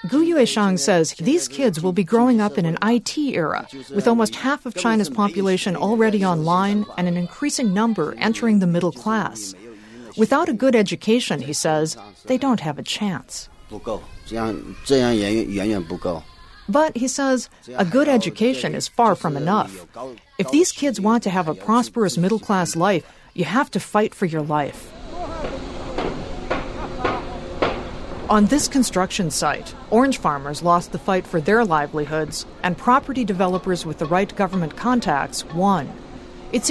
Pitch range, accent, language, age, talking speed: 165-230 Hz, American, English, 50-69, 145 wpm